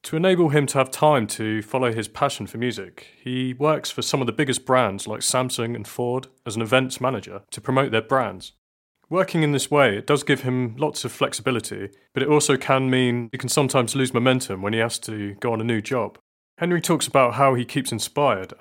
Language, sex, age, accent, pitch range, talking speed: English, male, 30-49, British, 110-135 Hz, 225 wpm